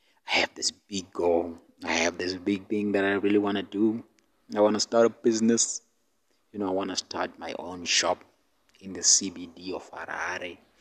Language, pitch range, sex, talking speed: English, 95-115 Hz, male, 200 wpm